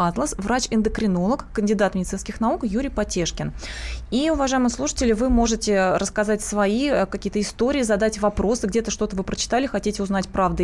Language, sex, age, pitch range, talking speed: Russian, female, 20-39, 195-240 Hz, 140 wpm